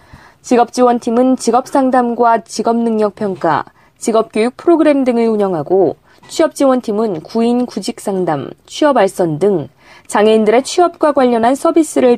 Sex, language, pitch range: female, Korean, 205-270 Hz